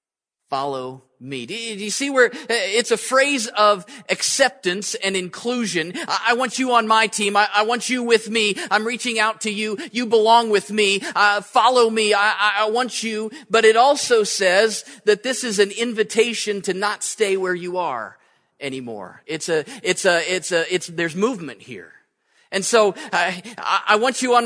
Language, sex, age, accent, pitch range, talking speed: English, male, 40-59, American, 180-230 Hz, 190 wpm